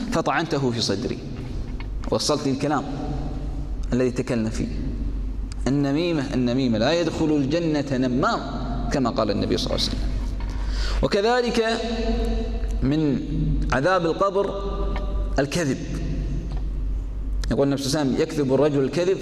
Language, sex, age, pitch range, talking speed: Arabic, male, 20-39, 135-215 Hz, 100 wpm